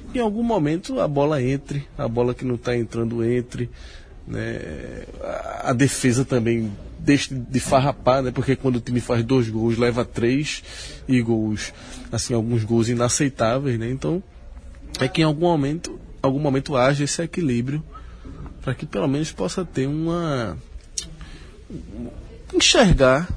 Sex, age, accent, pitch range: male, 20-39, Brazilian, 110-135 Hz